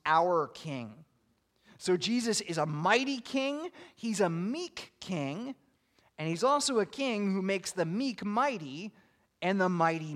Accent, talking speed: American, 150 wpm